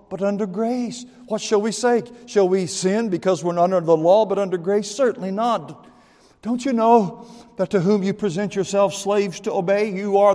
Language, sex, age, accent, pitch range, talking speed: English, male, 50-69, American, 140-205 Hz, 205 wpm